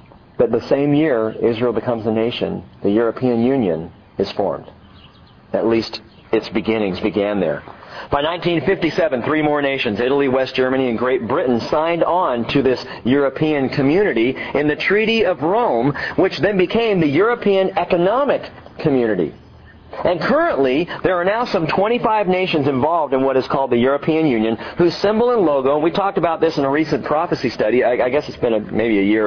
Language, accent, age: English, American, 40-59